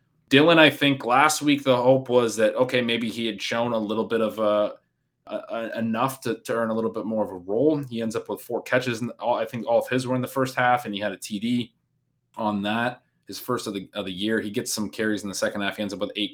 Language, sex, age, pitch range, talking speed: English, male, 20-39, 105-125 Hz, 270 wpm